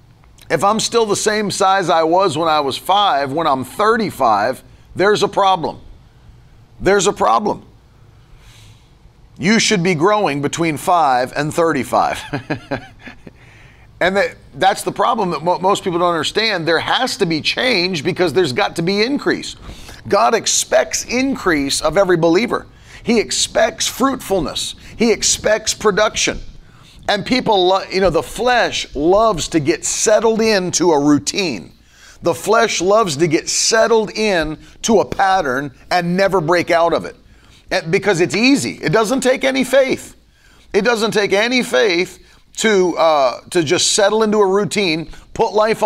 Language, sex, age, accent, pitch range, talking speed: English, male, 40-59, American, 165-215 Hz, 150 wpm